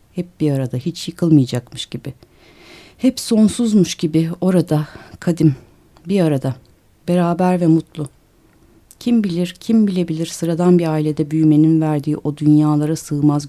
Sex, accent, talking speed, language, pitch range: female, native, 125 wpm, Turkish, 135-165 Hz